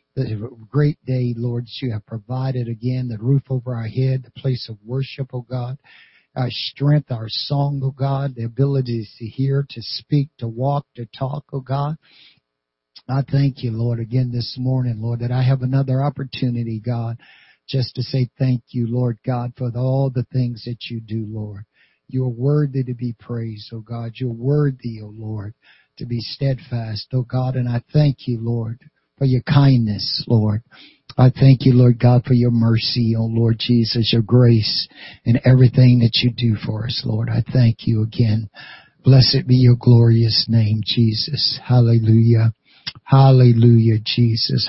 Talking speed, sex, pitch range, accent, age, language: 170 wpm, male, 115-130 Hz, American, 60-79, English